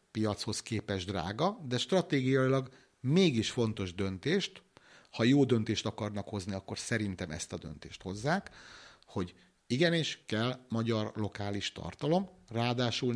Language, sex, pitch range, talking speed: Hungarian, male, 100-135 Hz, 120 wpm